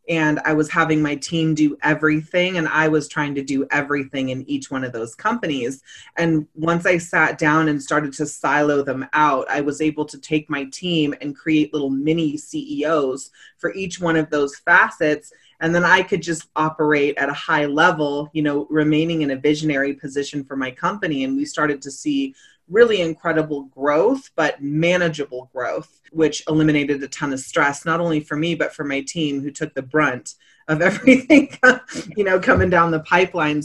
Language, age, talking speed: English, 30-49, 190 wpm